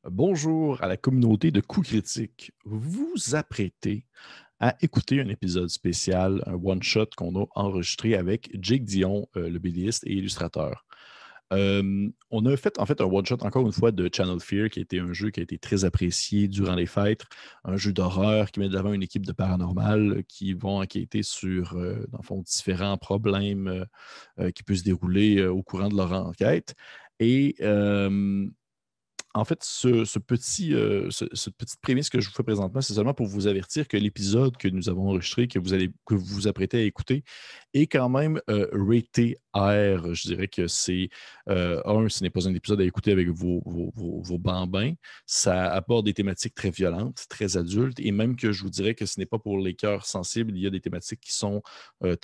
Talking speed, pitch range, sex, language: 200 wpm, 95-110 Hz, male, French